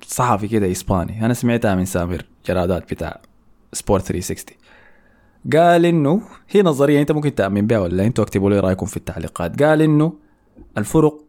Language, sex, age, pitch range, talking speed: Arabic, male, 20-39, 100-145 Hz, 155 wpm